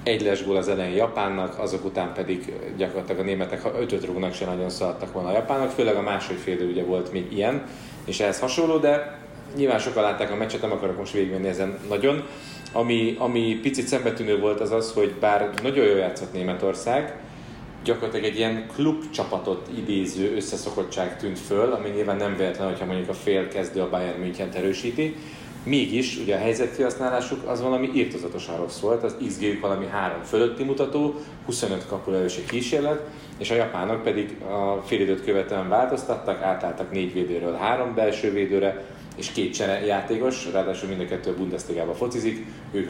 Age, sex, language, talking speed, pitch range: 30-49, male, Hungarian, 165 wpm, 95-125 Hz